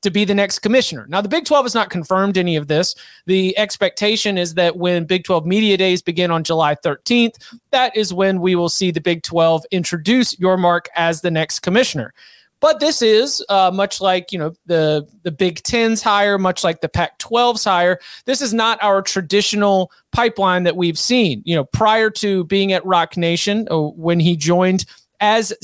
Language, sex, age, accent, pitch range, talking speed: English, male, 30-49, American, 170-210 Hz, 200 wpm